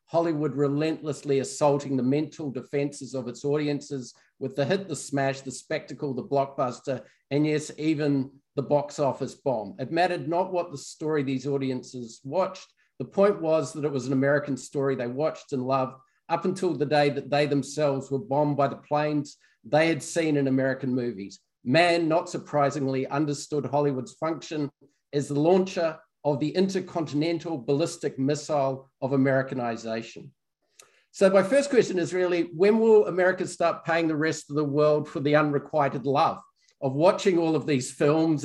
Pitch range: 140-165 Hz